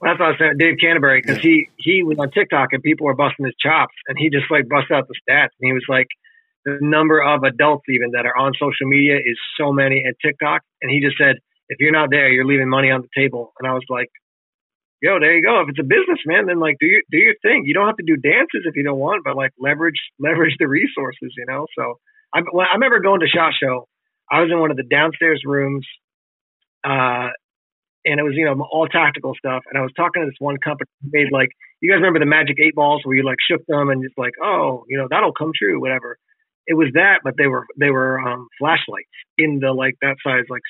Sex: male